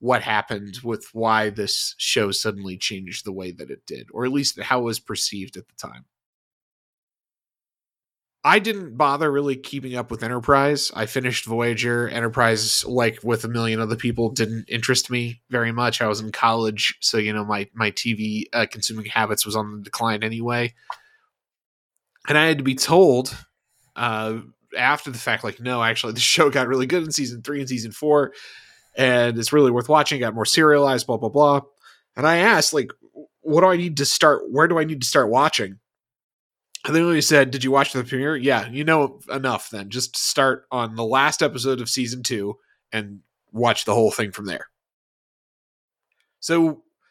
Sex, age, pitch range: male, 30-49, 115-150 Hz